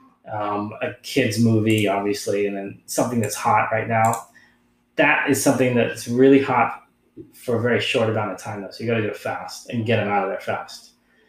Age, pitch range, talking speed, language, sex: 20-39, 105-125 Hz, 205 wpm, English, male